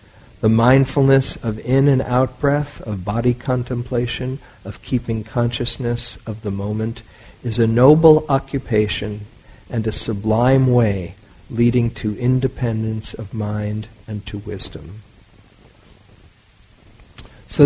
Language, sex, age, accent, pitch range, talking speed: English, male, 50-69, American, 105-135 Hz, 110 wpm